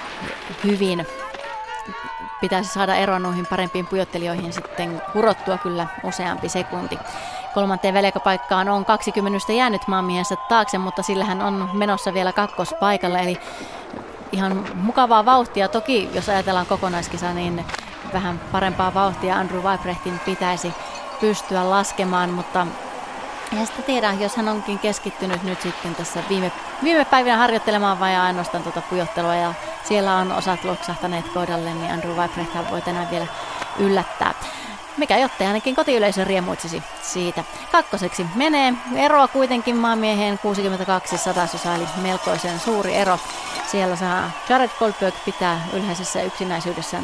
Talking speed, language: 130 wpm, Finnish